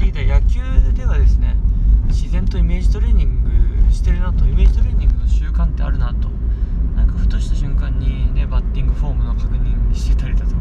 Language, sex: Japanese, male